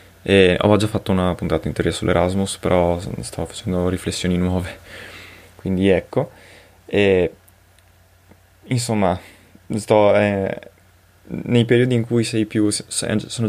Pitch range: 95-105 Hz